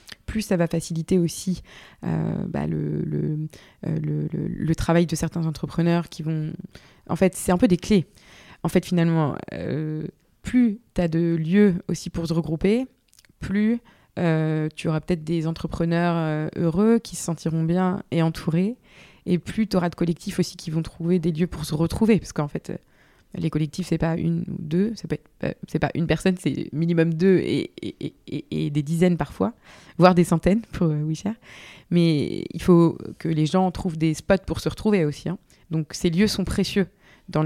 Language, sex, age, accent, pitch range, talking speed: French, female, 20-39, French, 155-180 Hz, 195 wpm